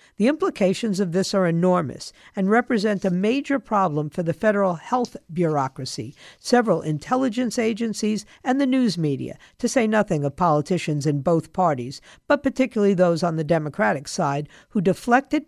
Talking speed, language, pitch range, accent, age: 155 wpm, English, 165-235 Hz, American, 50-69